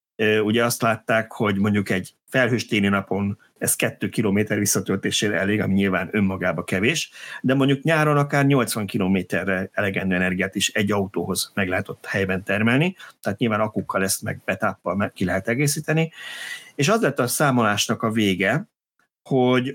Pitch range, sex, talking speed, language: 100-125 Hz, male, 150 wpm, Hungarian